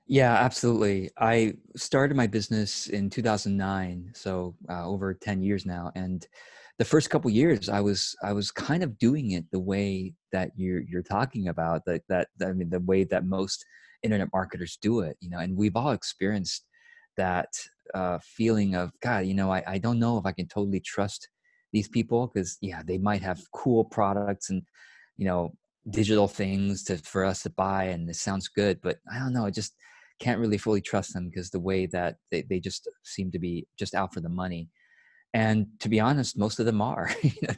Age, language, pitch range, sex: 20-39, English, 95-115 Hz, male